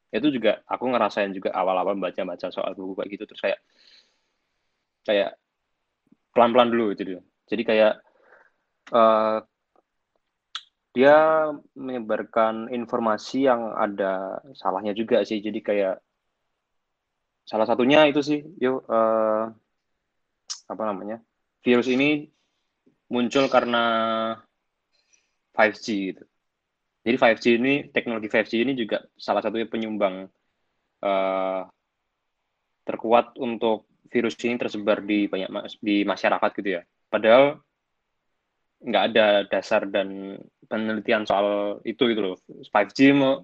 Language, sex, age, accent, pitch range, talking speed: Indonesian, male, 20-39, native, 105-125 Hz, 110 wpm